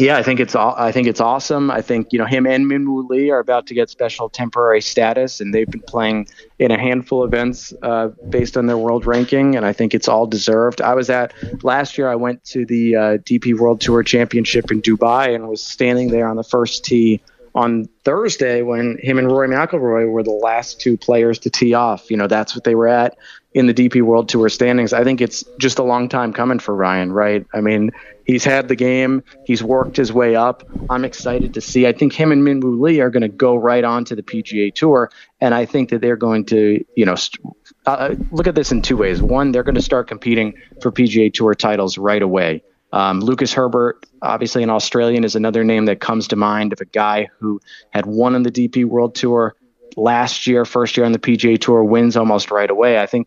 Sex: male